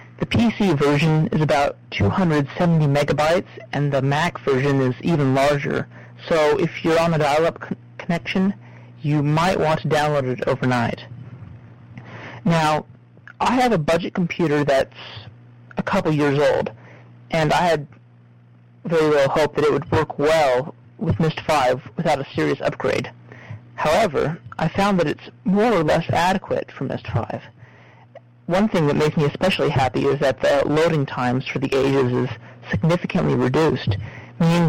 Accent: American